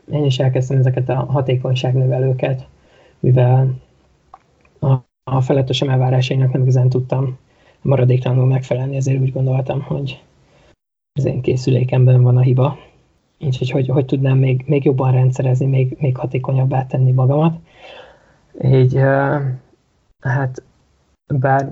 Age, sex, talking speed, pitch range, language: 20-39, male, 120 wpm, 130-140 Hz, Hungarian